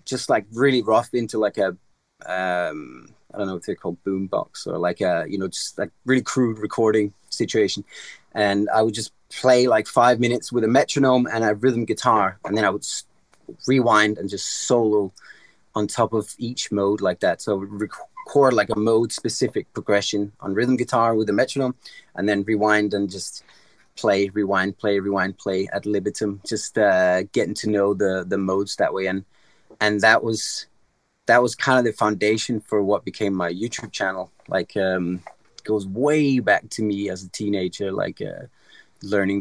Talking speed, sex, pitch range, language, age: 185 wpm, male, 100-120 Hz, English, 30-49